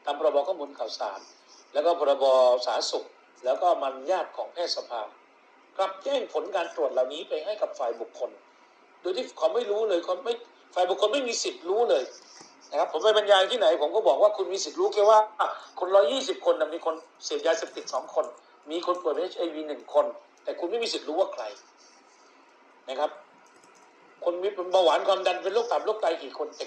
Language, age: Thai, 60-79